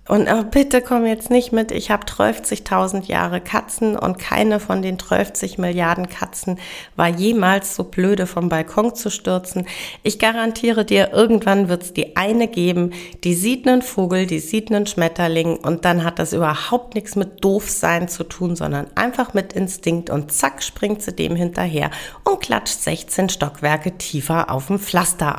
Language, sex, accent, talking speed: German, female, German, 165 wpm